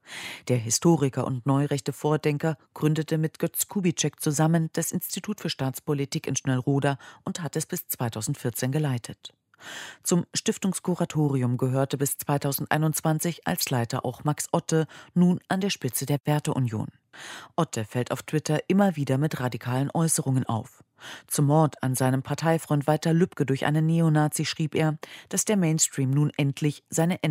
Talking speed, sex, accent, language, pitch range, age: 145 wpm, female, German, German, 130-160 Hz, 40-59